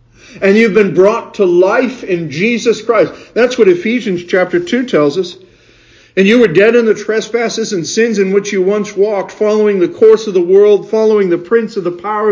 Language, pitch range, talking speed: English, 135-200 Hz, 205 wpm